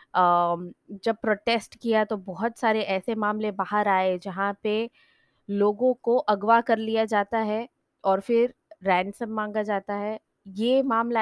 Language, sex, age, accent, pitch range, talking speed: Hindi, female, 20-39, native, 195-225 Hz, 145 wpm